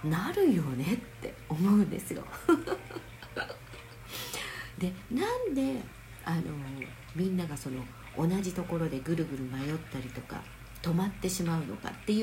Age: 50-69